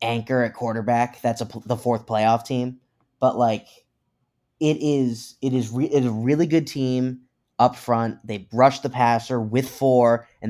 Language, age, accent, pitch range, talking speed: English, 20-39, American, 115-130 Hz, 175 wpm